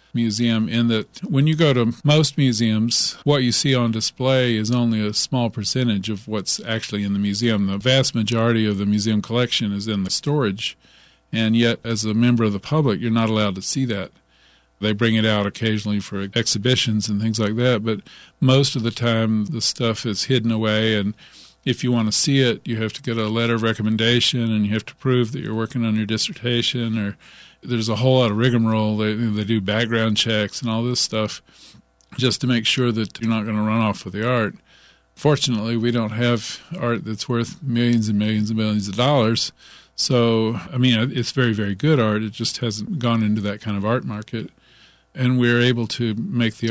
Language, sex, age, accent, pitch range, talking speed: English, male, 50-69, American, 110-125 Hz, 210 wpm